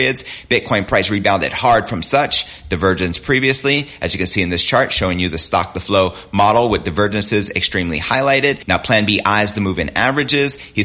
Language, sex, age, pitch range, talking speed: English, male, 30-49, 90-115 Hz, 195 wpm